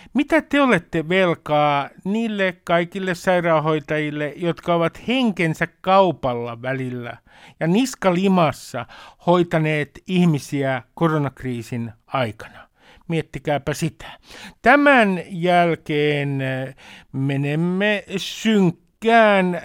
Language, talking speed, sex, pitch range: Finnish, 75 wpm, male, 150-190 Hz